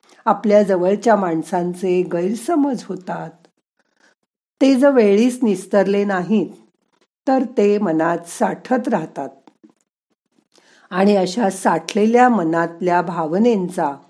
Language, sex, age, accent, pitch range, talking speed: Marathi, female, 50-69, native, 175-235 Hz, 85 wpm